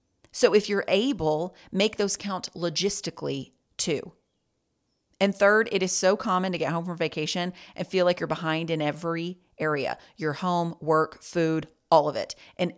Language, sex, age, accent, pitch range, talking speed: English, female, 40-59, American, 175-220 Hz, 170 wpm